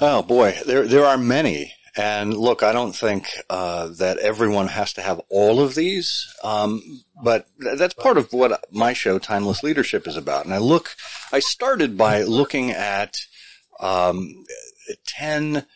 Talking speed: 165 wpm